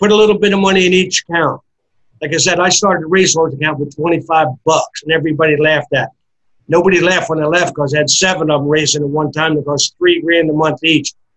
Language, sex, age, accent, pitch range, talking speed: English, male, 50-69, American, 155-200 Hz, 245 wpm